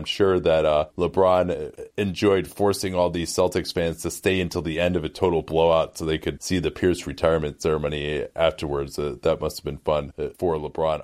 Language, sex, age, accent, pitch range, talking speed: English, male, 30-49, American, 90-115 Hz, 200 wpm